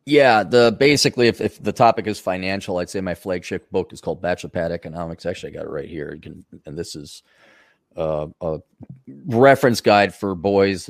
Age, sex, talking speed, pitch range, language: 30-49, male, 200 wpm, 85-100 Hz, English